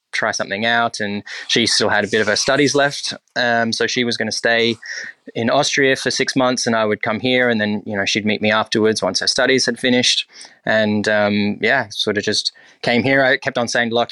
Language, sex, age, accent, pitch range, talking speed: English, male, 20-39, Australian, 105-125 Hz, 240 wpm